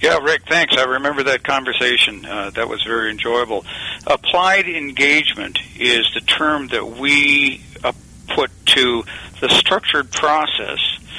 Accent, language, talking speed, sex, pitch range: American, English, 130 wpm, male, 120-145 Hz